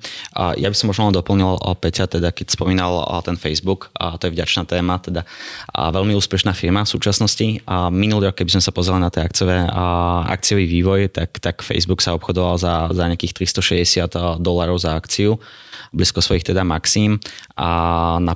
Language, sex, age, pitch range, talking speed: Slovak, male, 20-39, 85-95 Hz, 185 wpm